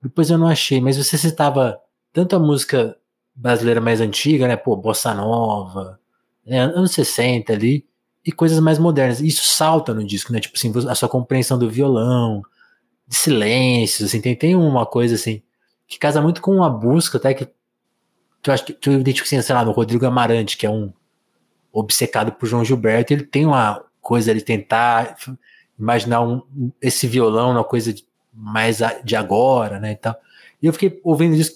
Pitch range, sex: 115-145 Hz, male